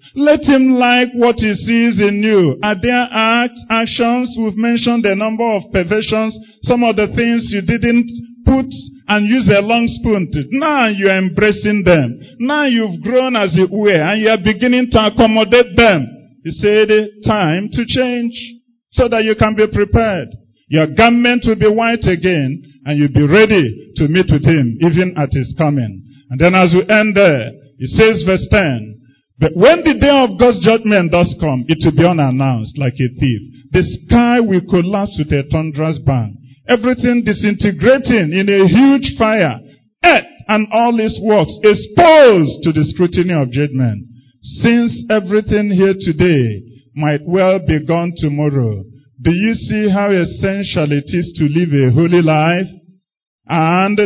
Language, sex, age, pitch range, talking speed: English, male, 50-69, 150-225 Hz, 165 wpm